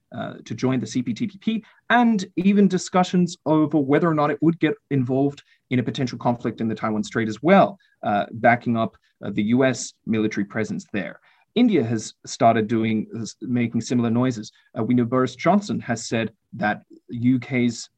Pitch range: 120-165 Hz